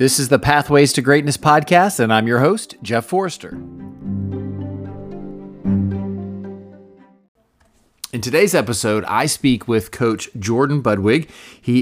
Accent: American